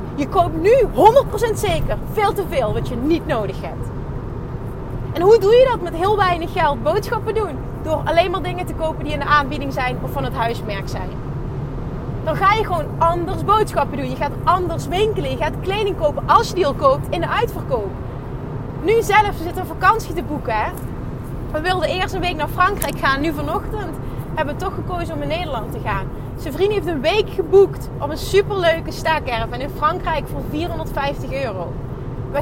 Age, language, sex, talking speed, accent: 20-39, Dutch, female, 195 wpm, Dutch